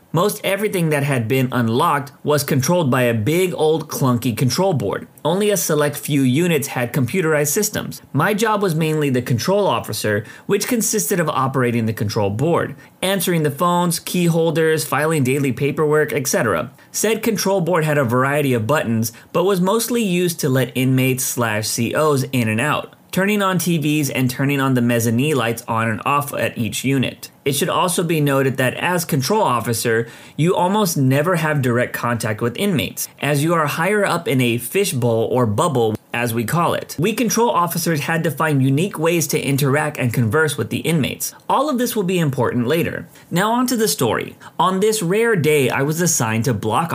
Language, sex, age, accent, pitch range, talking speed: English, male, 30-49, American, 125-175 Hz, 190 wpm